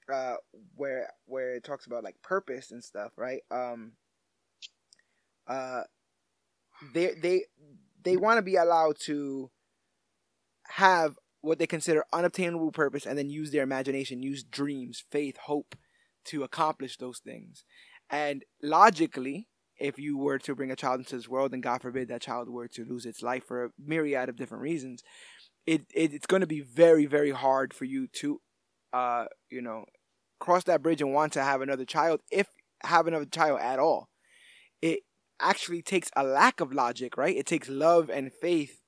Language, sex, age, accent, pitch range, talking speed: English, male, 20-39, American, 130-165 Hz, 170 wpm